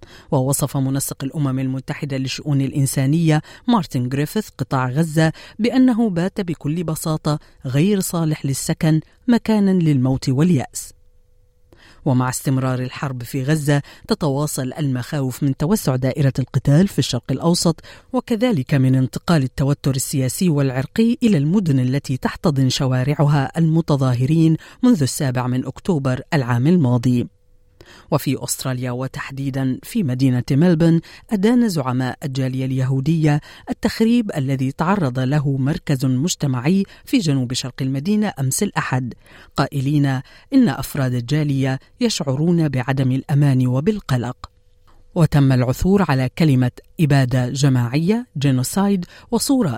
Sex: female